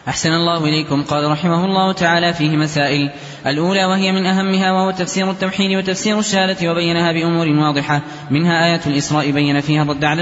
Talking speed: 165 wpm